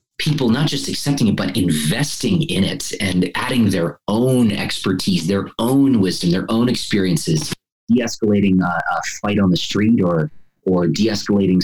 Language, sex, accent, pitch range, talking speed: English, male, American, 100-145 Hz, 155 wpm